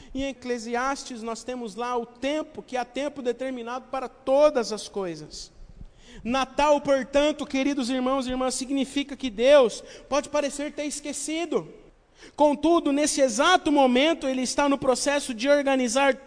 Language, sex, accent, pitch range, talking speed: Portuguese, male, Brazilian, 225-285 Hz, 140 wpm